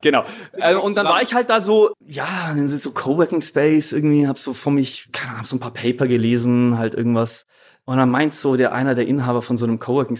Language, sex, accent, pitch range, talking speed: German, male, German, 120-150 Hz, 240 wpm